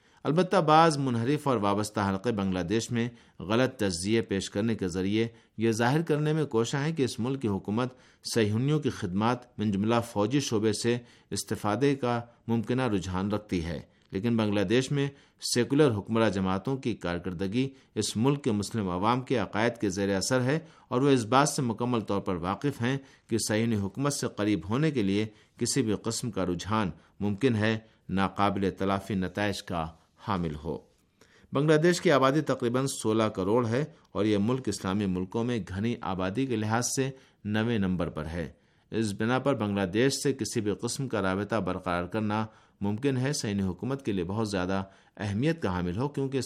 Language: Urdu